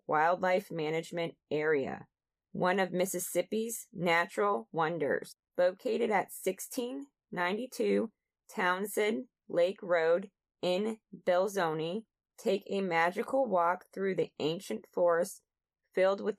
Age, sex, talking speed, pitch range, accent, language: 20-39, female, 95 wpm, 170-215 Hz, American, English